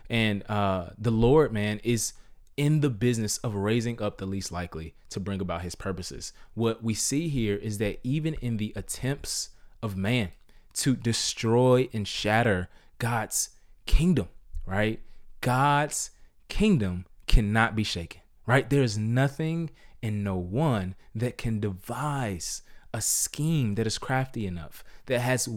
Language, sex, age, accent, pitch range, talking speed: English, male, 20-39, American, 100-130 Hz, 145 wpm